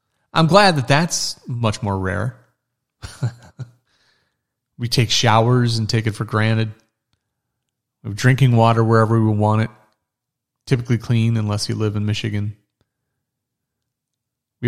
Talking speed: 125 wpm